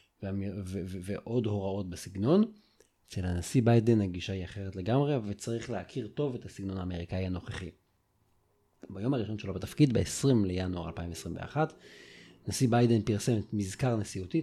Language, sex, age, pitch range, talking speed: Hebrew, male, 30-49, 95-135 Hz, 135 wpm